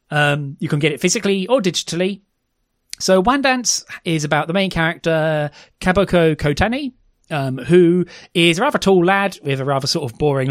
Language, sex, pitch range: English, male, 130-170 Hz